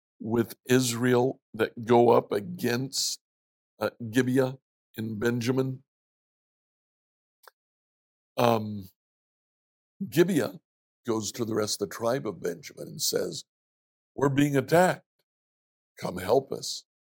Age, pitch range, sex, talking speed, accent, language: 60-79, 100-135 Hz, male, 100 wpm, American, English